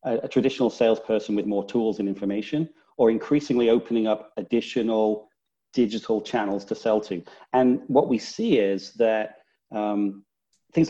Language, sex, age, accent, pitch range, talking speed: English, male, 40-59, British, 105-130 Hz, 145 wpm